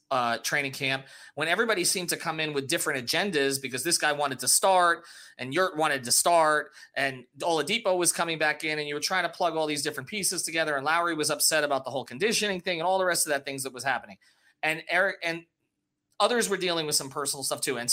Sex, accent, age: male, American, 30-49